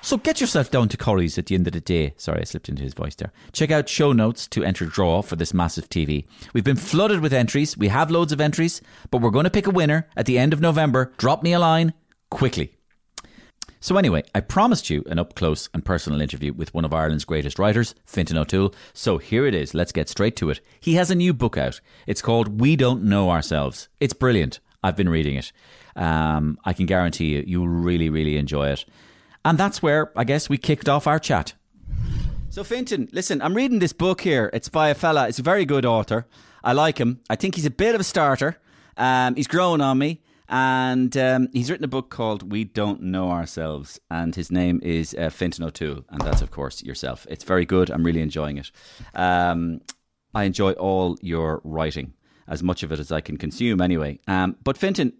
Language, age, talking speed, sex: English, 30-49, 220 wpm, male